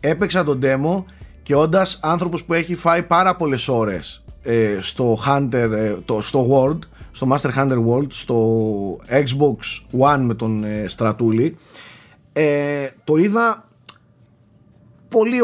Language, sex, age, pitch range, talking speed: Greek, male, 30-49, 115-160 Hz, 130 wpm